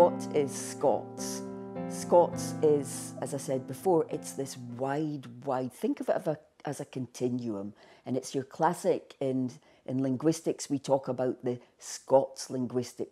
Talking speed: 155 wpm